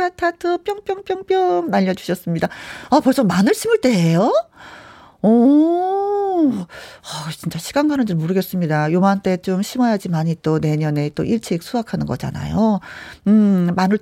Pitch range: 180-300 Hz